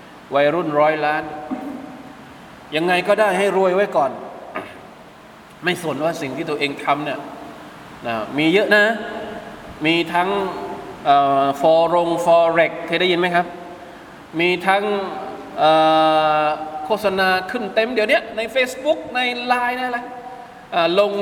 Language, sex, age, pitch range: Thai, male, 20-39, 155-215 Hz